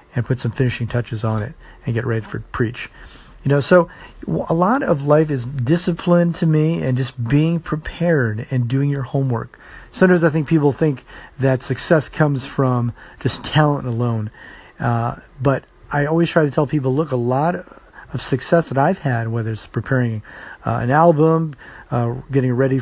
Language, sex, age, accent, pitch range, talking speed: English, male, 40-59, American, 125-165 Hz, 180 wpm